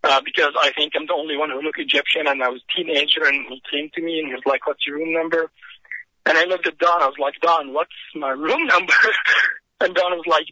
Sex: male